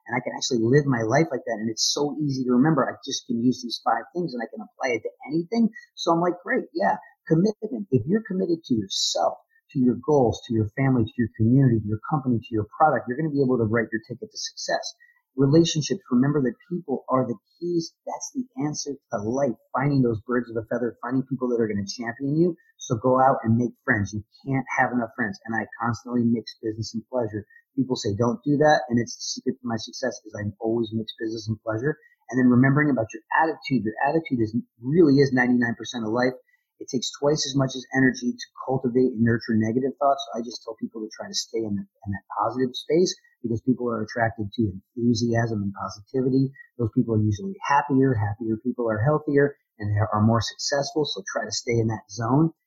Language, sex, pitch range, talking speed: English, male, 115-145 Hz, 230 wpm